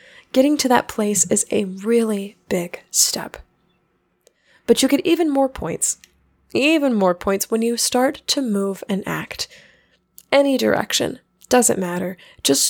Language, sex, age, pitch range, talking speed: English, female, 10-29, 205-255 Hz, 140 wpm